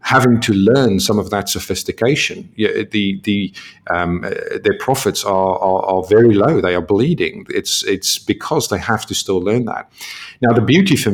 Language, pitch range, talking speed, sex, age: English, 95-125 Hz, 190 wpm, male, 50-69